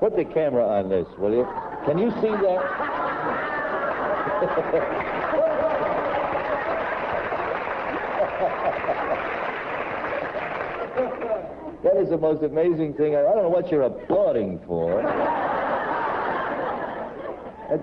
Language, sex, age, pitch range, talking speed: English, male, 60-79, 140-190 Hz, 85 wpm